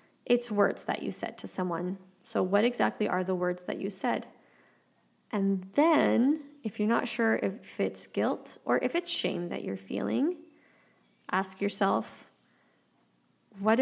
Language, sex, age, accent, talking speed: English, female, 20-39, American, 150 wpm